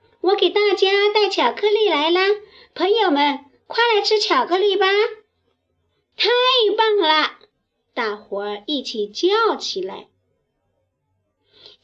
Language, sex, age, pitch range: Chinese, male, 50-69, 255-415 Hz